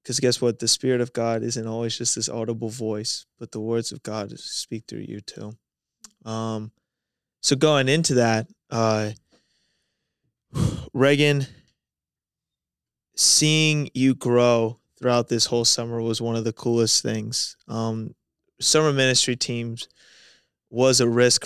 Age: 20-39